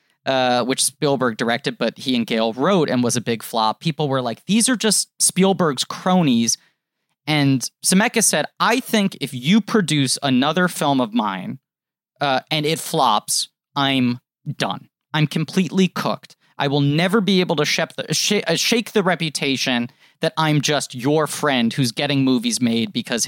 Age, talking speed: 30-49, 160 wpm